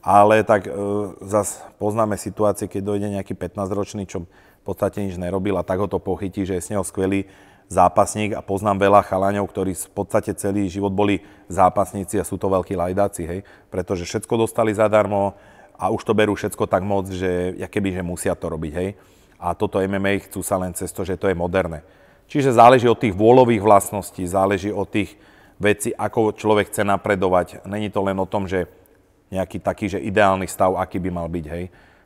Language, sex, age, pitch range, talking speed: Slovak, male, 30-49, 95-105 Hz, 190 wpm